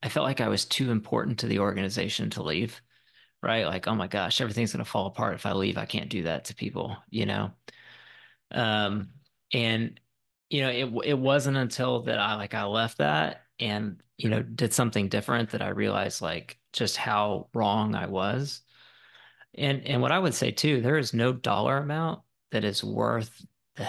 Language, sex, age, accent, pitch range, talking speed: English, male, 30-49, American, 105-120 Hz, 195 wpm